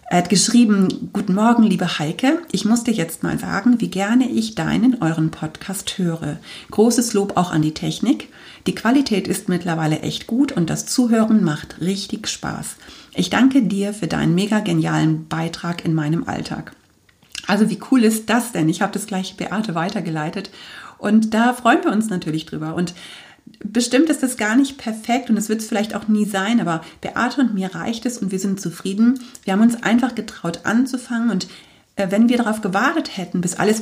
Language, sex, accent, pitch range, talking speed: German, female, German, 180-225 Hz, 190 wpm